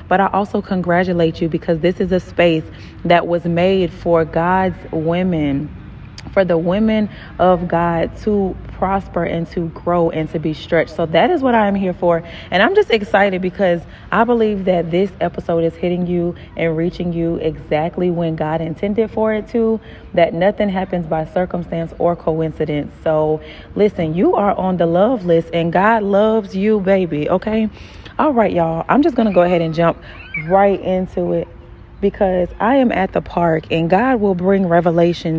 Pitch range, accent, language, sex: 170-205 Hz, American, English, female